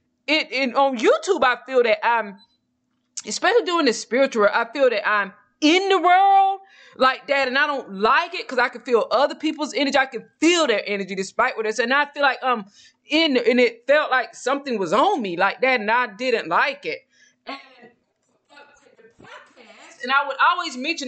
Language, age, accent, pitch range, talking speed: English, 20-39, American, 215-275 Hz, 200 wpm